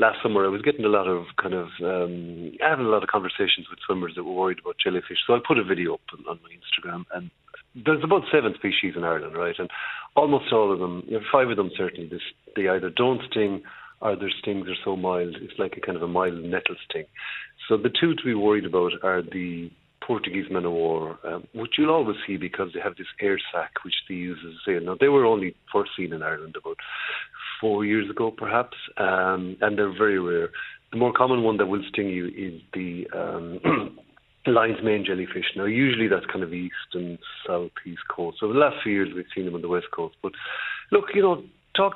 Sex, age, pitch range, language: male, 50-69, 90-150 Hz, English